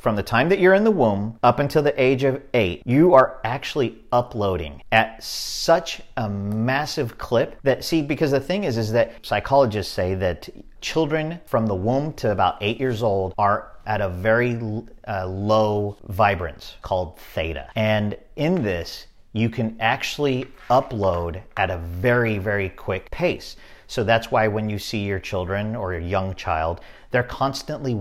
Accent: American